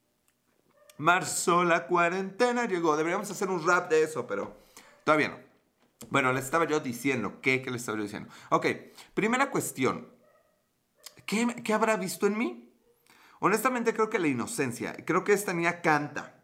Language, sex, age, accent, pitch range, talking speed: Spanish, male, 30-49, Mexican, 120-195 Hz, 155 wpm